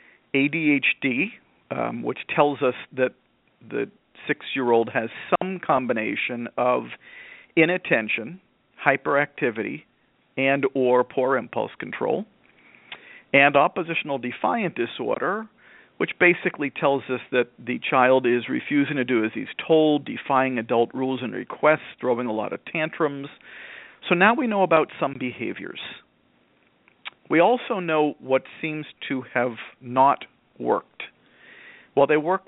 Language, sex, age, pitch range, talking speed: English, male, 50-69, 125-155 Hz, 120 wpm